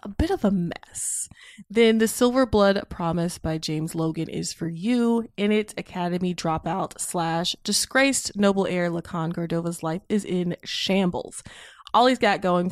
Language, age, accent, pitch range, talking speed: English, 20-39, American, 170-215 Hz, 160 wpm